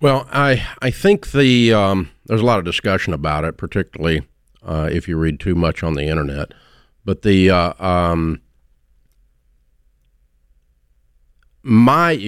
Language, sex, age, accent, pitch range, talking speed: English, male, 50-69, American, 80-110 Hz, 135 wpm